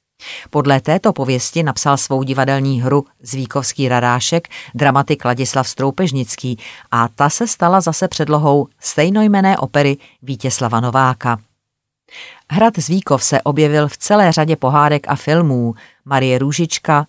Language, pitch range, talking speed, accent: Czech, 130-155 Hz, 120 wpm, native